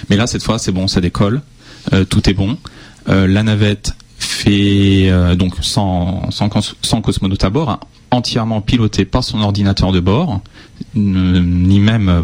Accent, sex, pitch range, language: French, male, 95-110 Hz, French